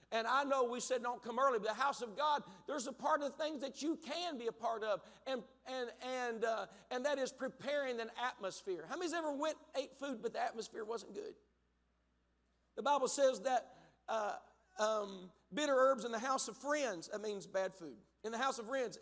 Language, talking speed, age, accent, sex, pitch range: English, 220 wpm, 50-69, American, male, 215-290 Hz